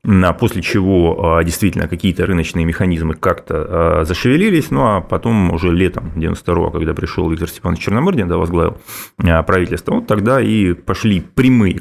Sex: male